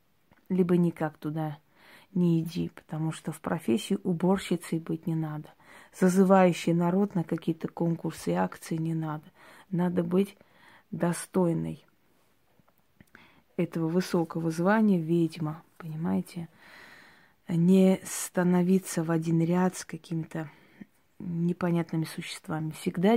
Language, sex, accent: Russian, female, native